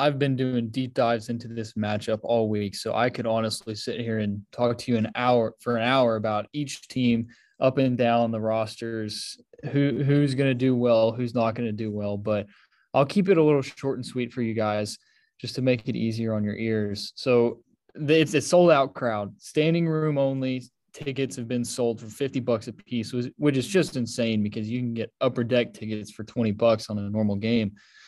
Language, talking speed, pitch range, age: English, 215 wpm, 115-140 Hz, 20-39